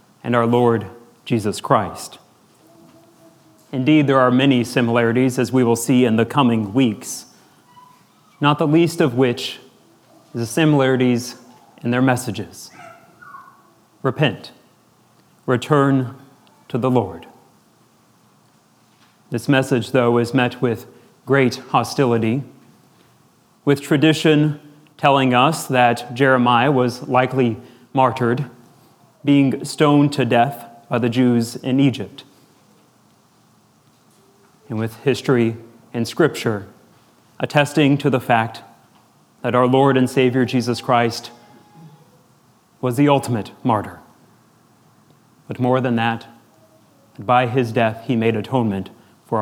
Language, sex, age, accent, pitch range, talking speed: English, male, 30-49, American, 120-140 Hz, 110 wpm